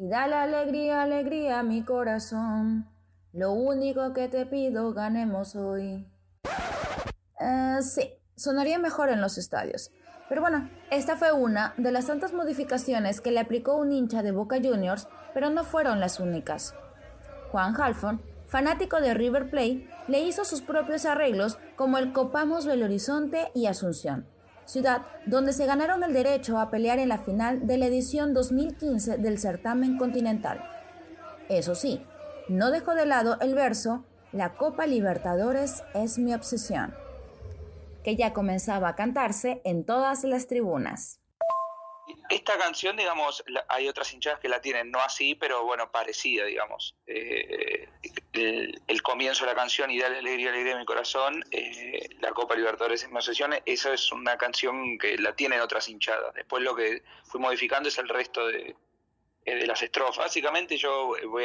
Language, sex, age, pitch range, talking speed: Spanish, female, 20-39, 200-310 Hz, 160 wpm